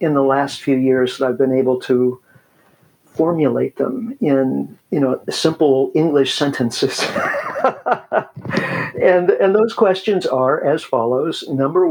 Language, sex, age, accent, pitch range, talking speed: English, male, 50-69, American, 130-185 Hz, 130 wpm